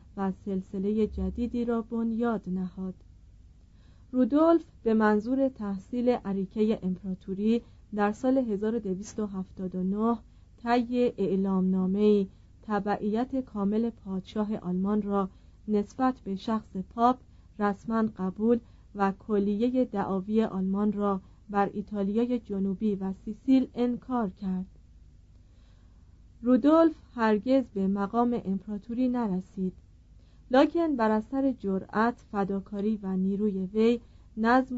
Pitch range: 190-235 Hz